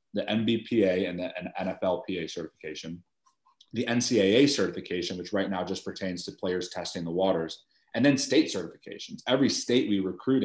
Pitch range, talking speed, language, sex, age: 90-105 Hz, 155 wpm, English, male, 30-49